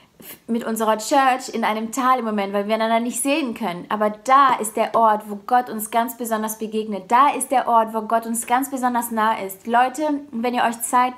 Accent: German